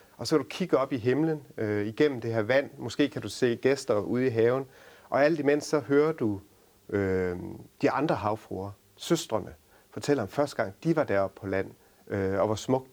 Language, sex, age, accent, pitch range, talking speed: Danish, male, 40-59, native, 105-145 Hz, 205 wpm